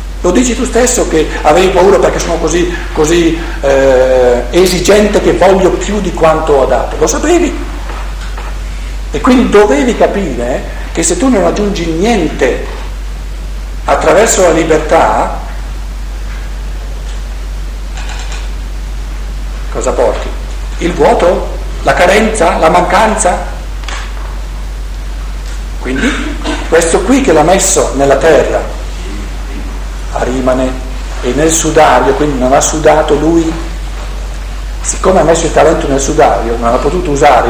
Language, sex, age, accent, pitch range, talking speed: Italian, male, 50-69, native, 130-205 Hz, 115 wpm